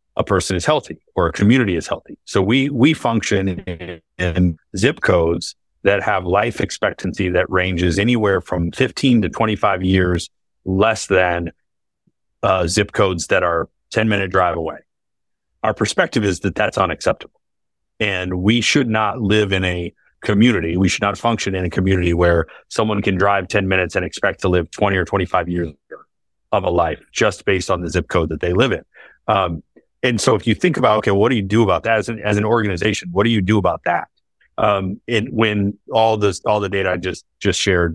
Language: English